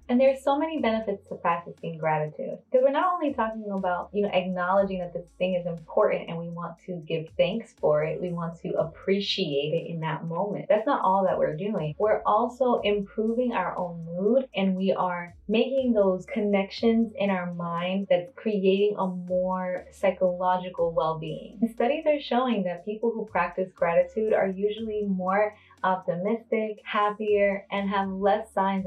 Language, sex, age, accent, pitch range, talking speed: English, female, 20-39, American, 180-210 Hz, 170 wpm